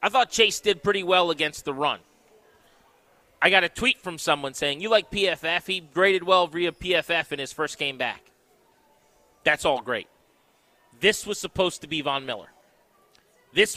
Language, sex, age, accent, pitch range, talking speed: English, male, 30-49, American, 160-210 Hz, 175 wpm